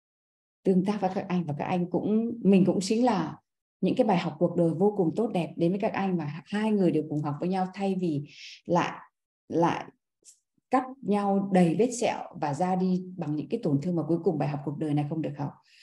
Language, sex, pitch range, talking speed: Vietnamese, female, 165-230 Hz, 240 wpm